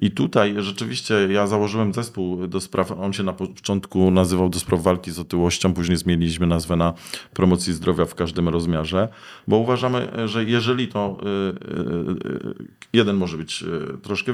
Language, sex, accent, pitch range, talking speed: Polish, male, native, 85-105 Hz, 150 wpm